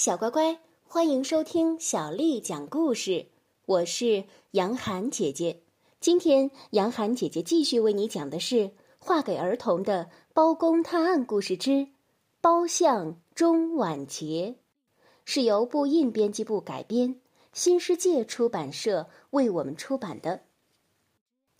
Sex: female